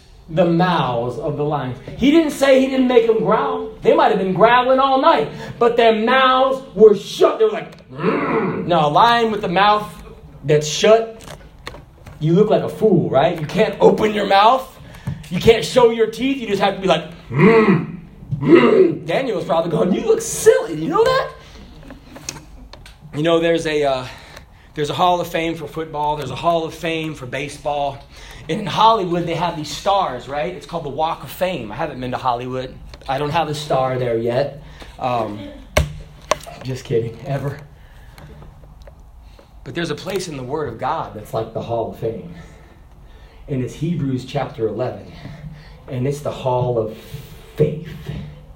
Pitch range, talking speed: 135-190 Hz, 175 wpm